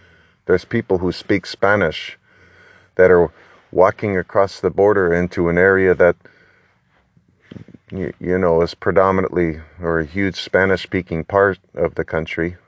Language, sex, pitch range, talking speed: English, male, 85-105 Hz, 130 wpm